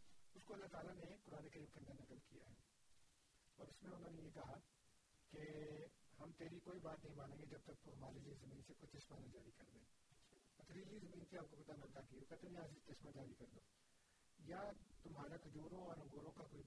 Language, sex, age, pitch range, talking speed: Urdu, male, 50-69, 140-170 Hz, 120 wpm